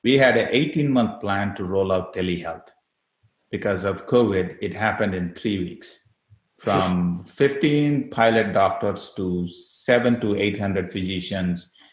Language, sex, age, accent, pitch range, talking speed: English, male, 30-49, Indian, 95-110 Hz, 135 wpm